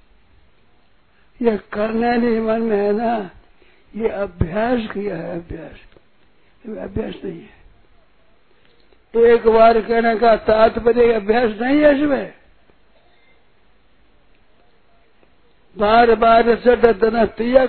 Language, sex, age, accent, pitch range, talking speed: Hindi, male, 60-79, native, 190-230 Hz, 100 wpm